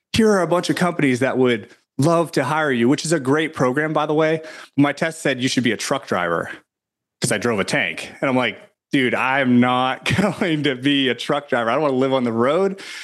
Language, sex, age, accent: English, male, 30-49, American